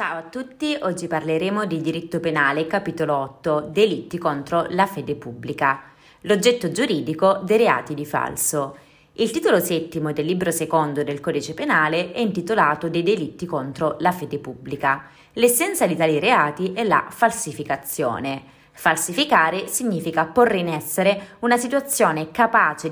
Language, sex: Italian, female